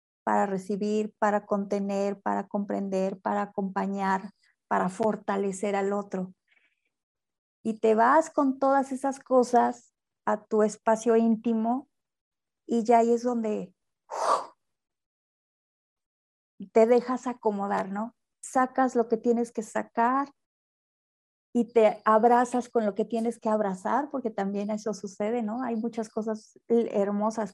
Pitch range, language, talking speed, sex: 195-230 Hz, Spanish, 125 wpm, female